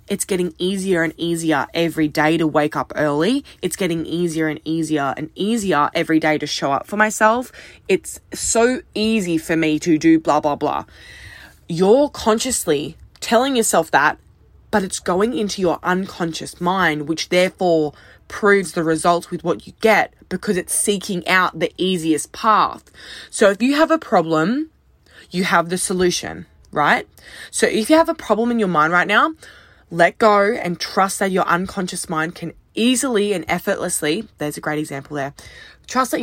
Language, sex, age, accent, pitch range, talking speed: English, female, 10-29, Australian, 160-210 Hz, 170 wpm